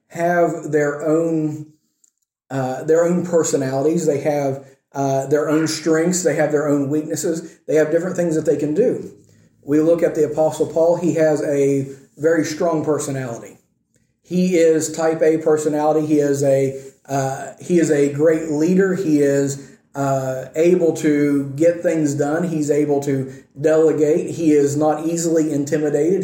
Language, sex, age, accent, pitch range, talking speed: English, male, 40-59, American, 145-165 Hz, 155 wpm